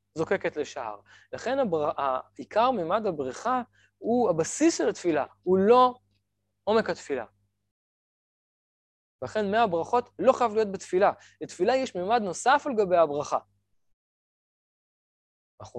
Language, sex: Hebrew, male